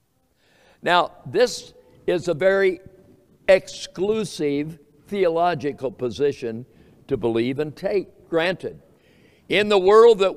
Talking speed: 100 wpm